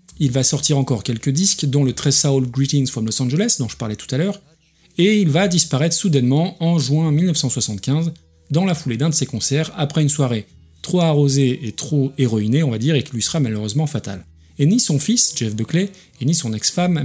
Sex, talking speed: male, 220 wpm